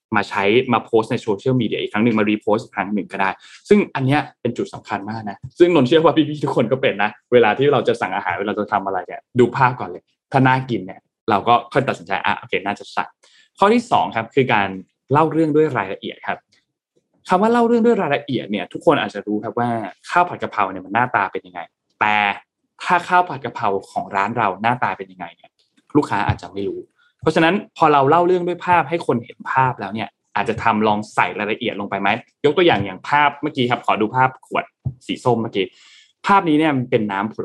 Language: Thai